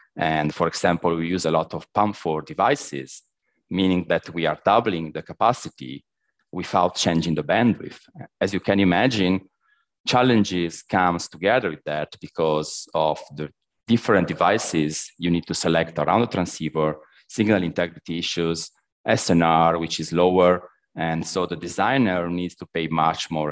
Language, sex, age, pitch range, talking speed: English, male, 40-59, 80-100 Hz, 150 wpm